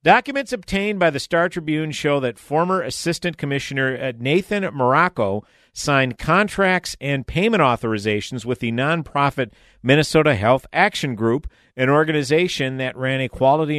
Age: 50-69